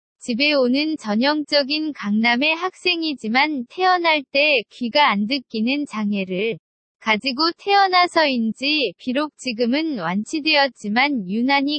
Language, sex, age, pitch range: Korean, female, 20-39, 225-300 Hz